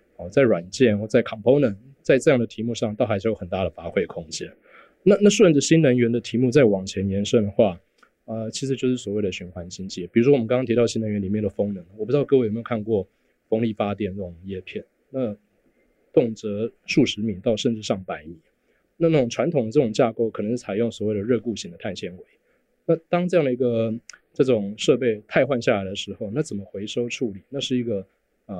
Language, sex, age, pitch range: Chinese, male, 20-39, 105-125 Hz